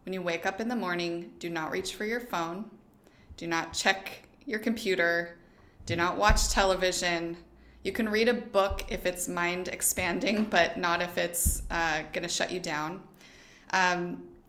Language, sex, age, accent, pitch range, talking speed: English, female, 20-39, American, 170-200 Hz, 170 wpm